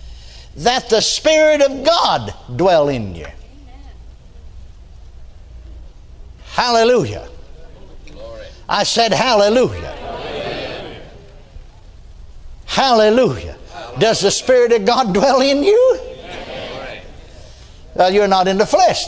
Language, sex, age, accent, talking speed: English, male, 60-79, American, 85 wpm